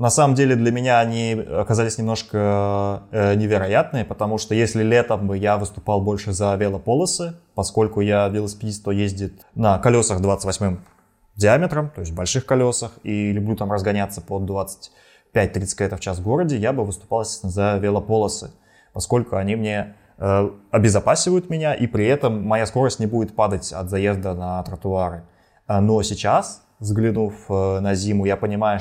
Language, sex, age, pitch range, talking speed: Russian, male, 20-39, 100-115 Hz, 150 wpm